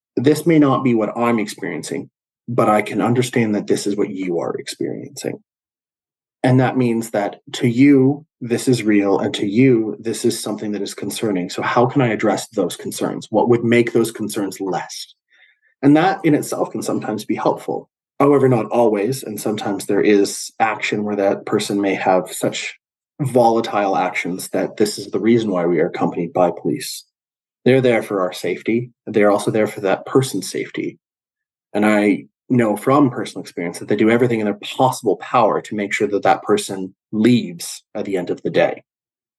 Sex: male